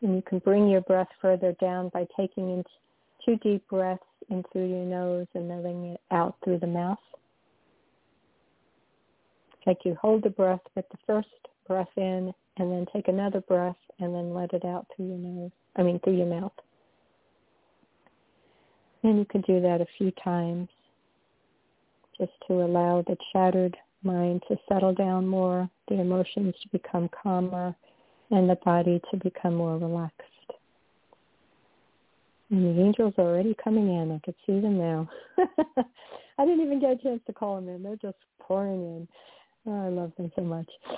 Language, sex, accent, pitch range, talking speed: English, female, American, 175-200 Hz, 170 wpm